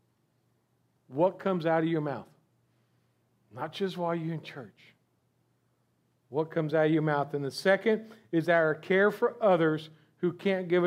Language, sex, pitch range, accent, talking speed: English, male, 160-220 Hz, American, 160 wpm